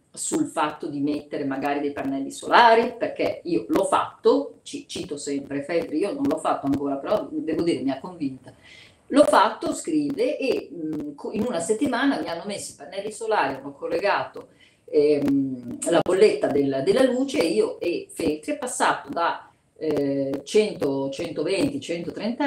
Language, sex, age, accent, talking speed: Italian, female, 40-59, native, 145 wpm